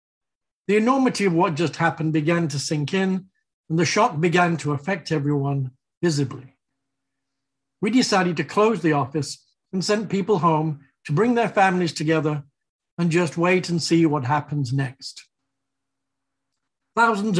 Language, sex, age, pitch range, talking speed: English, male, 60-79, 145-185 Hz, 145 wpm